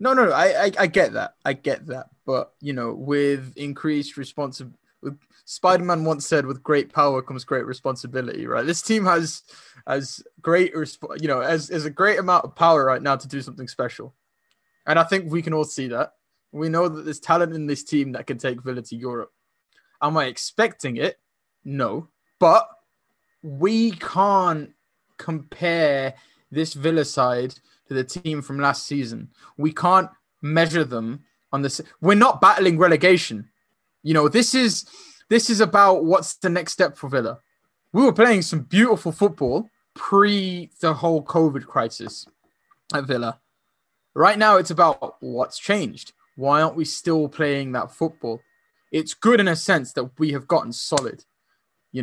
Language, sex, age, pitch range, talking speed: English, male, 20-39, 140-180 Hz, 170 wpm